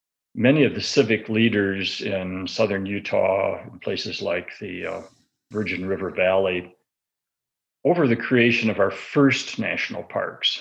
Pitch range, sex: 105-145 Hz, male